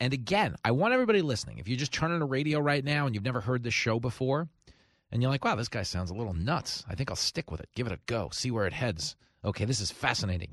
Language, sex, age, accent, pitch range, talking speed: English, male, 40-59, American, 105-140 Hz, 285 wpm